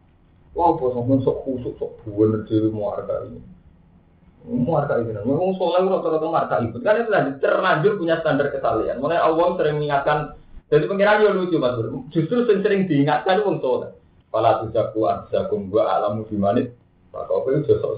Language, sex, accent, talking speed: Indonesian, male, native, 65 wpm